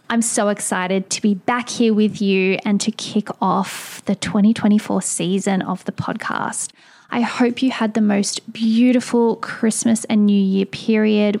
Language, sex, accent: English, female, Australian